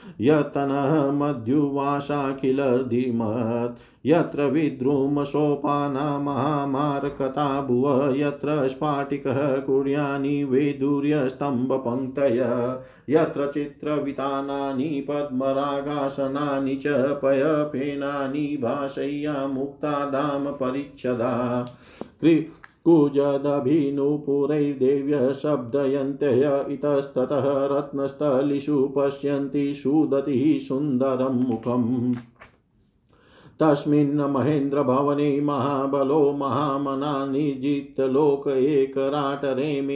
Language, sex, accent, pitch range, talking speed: Hindi, male, native, 135-145 Hz, 40 wpm